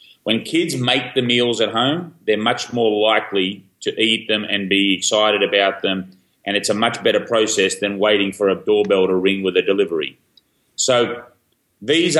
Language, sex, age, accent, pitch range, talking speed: English, male, 30-49, Australian, 105-140 Hz, 180 wpm